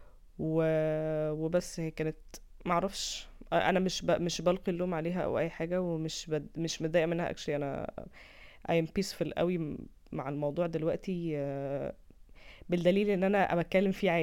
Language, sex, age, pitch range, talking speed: Arabic, female, 20-39, 160-185 Hz, 145 wpm